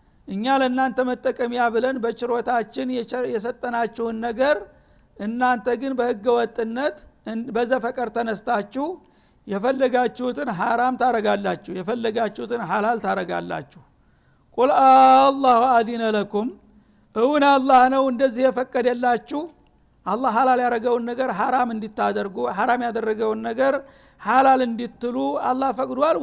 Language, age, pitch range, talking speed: Amharic, 60-79, 215-255 Hz, 95 wpm